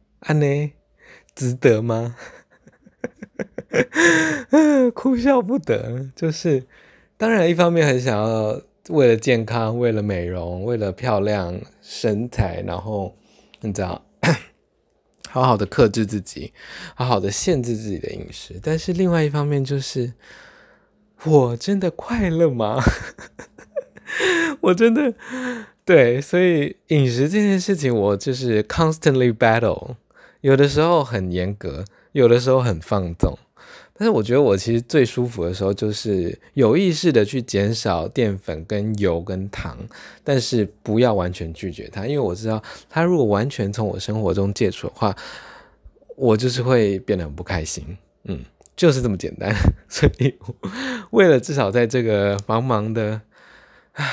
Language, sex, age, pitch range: Chinese, male, 20-39, 105-145 Hz